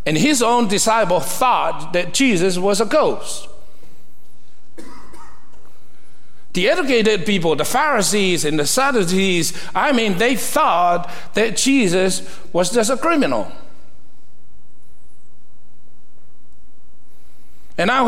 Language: English